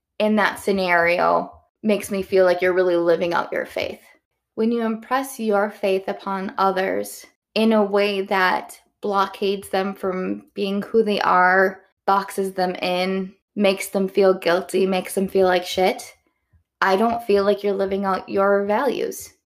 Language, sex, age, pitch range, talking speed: English, female, 20-39, 190-220 Hz, 160 wpm